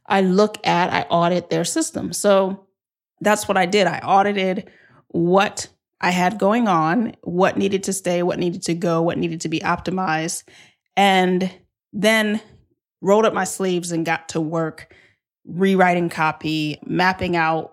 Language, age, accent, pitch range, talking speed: English, 20-39, American, 165-205 Hz, 155 wpm